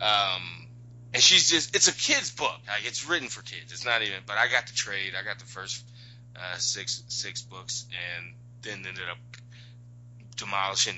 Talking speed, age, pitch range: 180 wpm, 20-39, 115-120 Hz